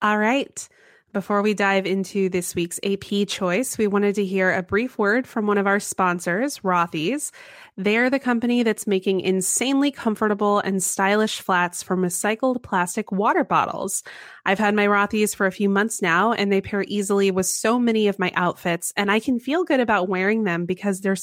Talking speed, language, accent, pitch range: 190 wpm, English, American, 185-225 Hz